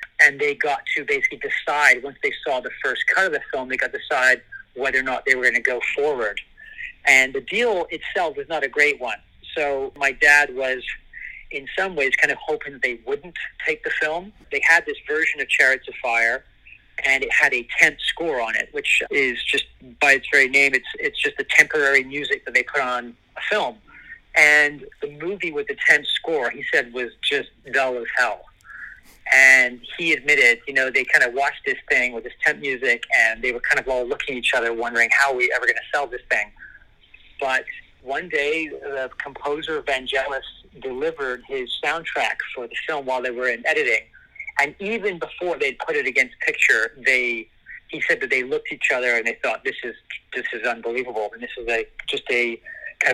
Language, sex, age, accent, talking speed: English, male, 40-59, American, 210 wpm